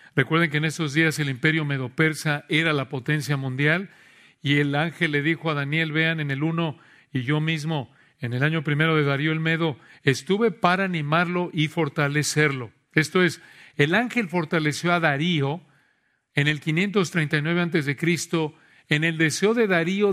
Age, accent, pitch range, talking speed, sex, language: 40-59, Mexican, 150-180 Hz, 165 wpm, male, Spanish